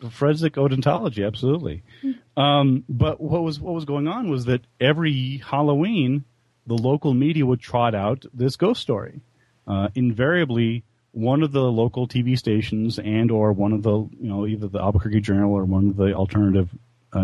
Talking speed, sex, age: 165 wpm, male, 30-49